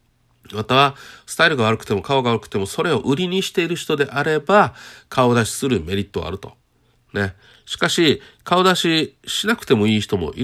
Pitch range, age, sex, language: 105-140 Hz, 40-59, male, Japanese